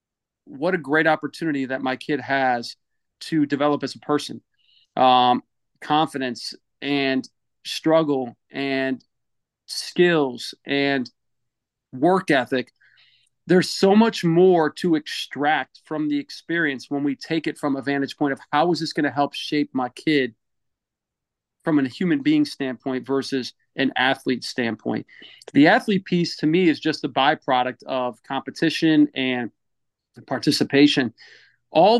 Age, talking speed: 40-59, 135 wpm